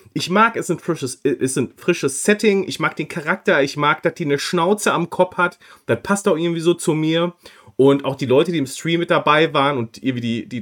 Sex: male